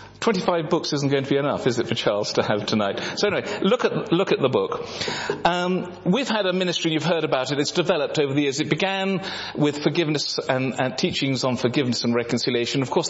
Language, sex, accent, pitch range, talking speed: English, male, British, 120-155 Hz, 225 wpm